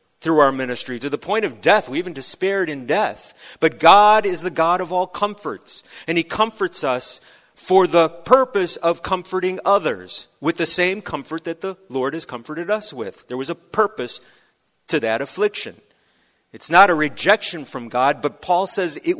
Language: English